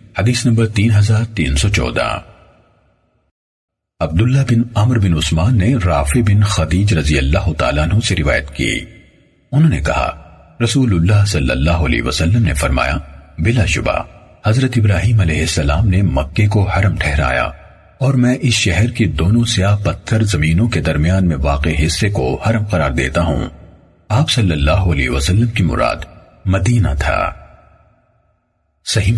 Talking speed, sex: 130 wpm, male